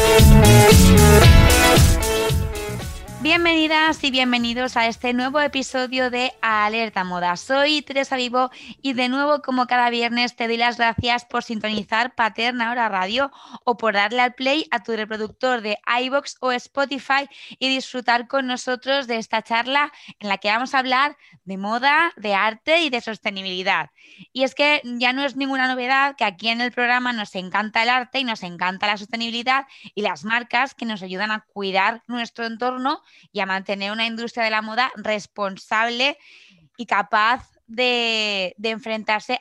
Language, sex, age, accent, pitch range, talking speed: Spanish, female, 20-39, Spanish, 210-255 Hz, 165 wpm